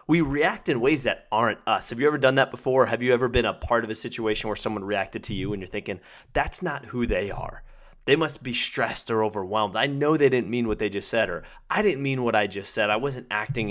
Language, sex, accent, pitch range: English, male, American, 105-140 Hz